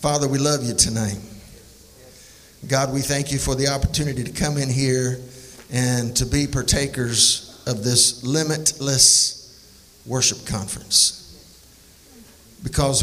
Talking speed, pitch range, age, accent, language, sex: 120 wpm, 110-145 Hz, 50-69, American, English, male